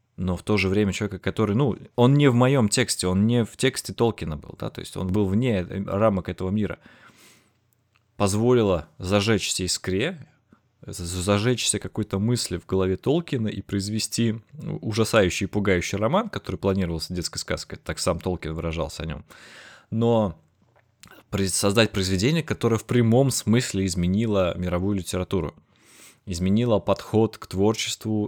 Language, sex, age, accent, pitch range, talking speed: Russian, male, 20-39, native, 95-110 Hz, 140 wpm